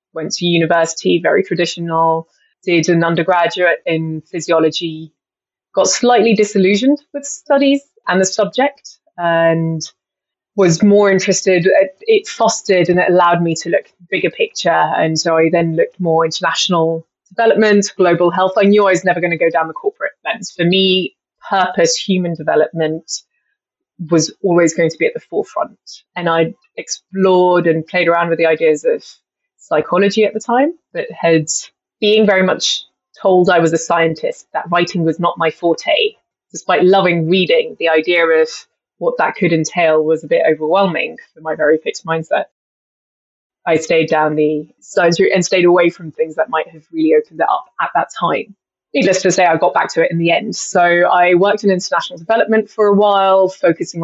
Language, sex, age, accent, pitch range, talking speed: English, female, 20-39, British, 165-205 Hz, 175 wpm